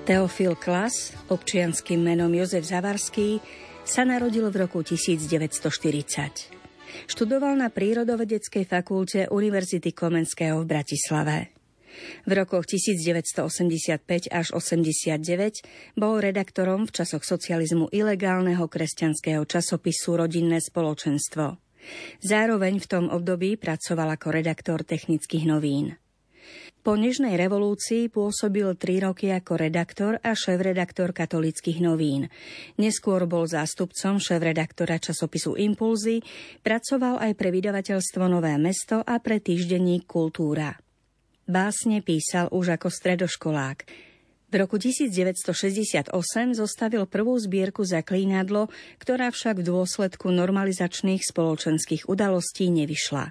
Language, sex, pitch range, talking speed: Slovak, female, 165-205 Hz, 105 wpm